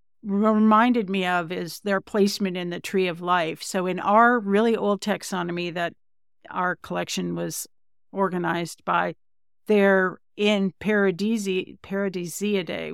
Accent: American